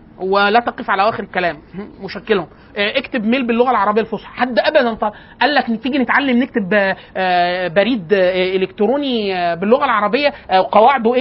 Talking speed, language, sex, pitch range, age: 130 wpm, Arabic, male, 205-275 Hz, 30-49